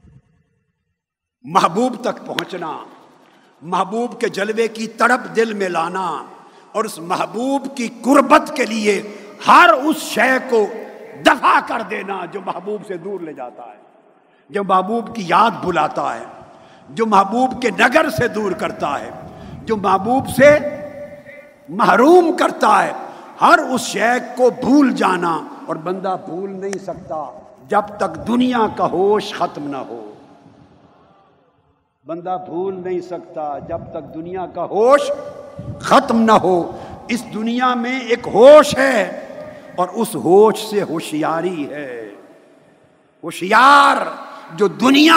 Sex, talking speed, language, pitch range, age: male, 130 wpm, Urdu, 195-285 Hz, 50-69